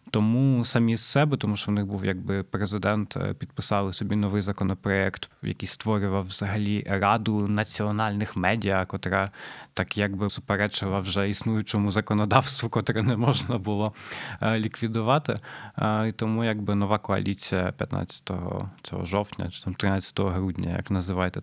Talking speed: 130 wpm